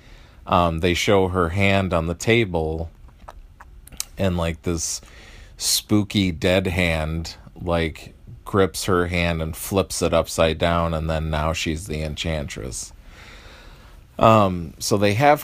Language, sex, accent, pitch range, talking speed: English, male, American, 80-100 Hz, 130 wpm